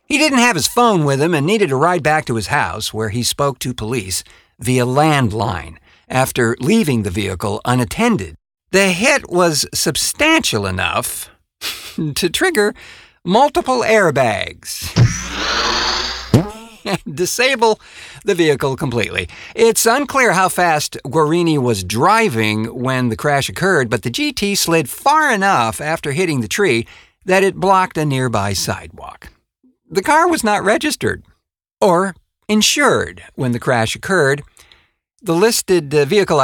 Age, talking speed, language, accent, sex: 50-69, 135 wpm, English, American, male